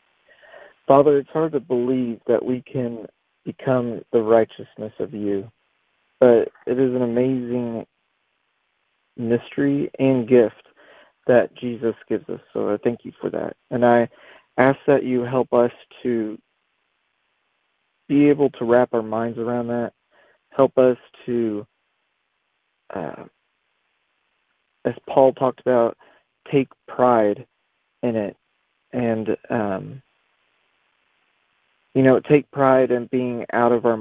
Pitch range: 115-130 Hz